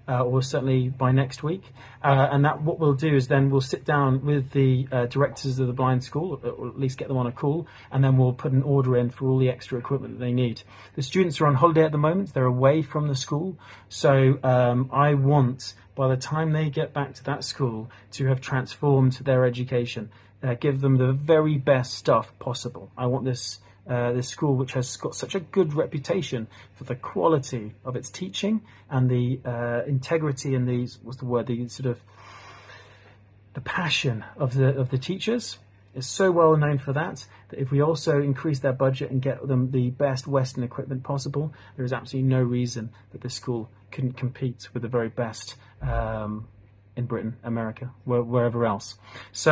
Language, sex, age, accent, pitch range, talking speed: Russian, male, 40-59, British, 120-145 Hz, 205 wpm